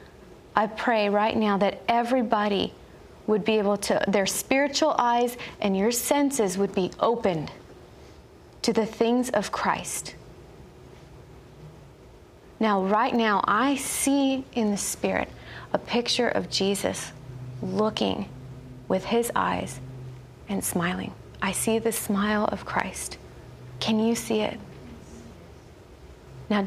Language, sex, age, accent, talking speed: English, female, 30-49, American, 120 wpm